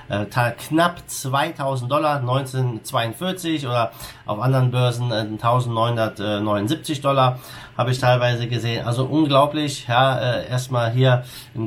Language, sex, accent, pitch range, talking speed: German, male, German, 115-135 Hz, 105 wpm